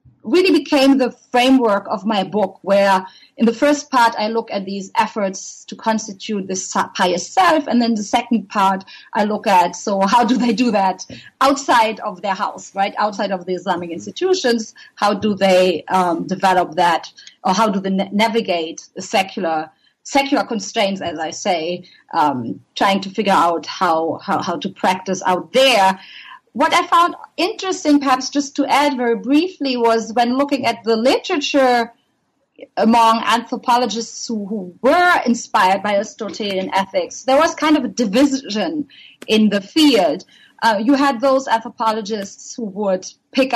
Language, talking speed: English, 165 wpm